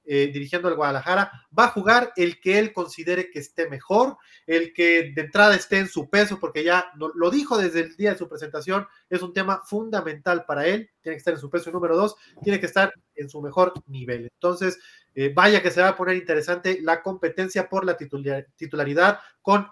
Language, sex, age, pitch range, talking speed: Spanish, male, 30-49, 165-205 Hz, 215 wpm